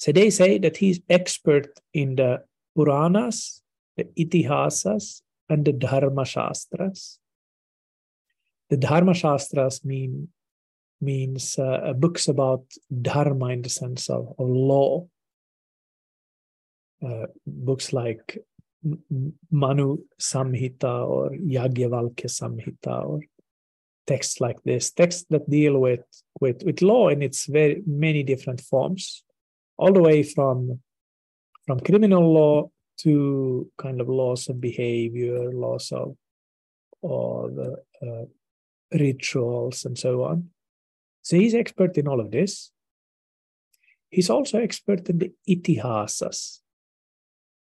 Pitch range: 125-170 Hz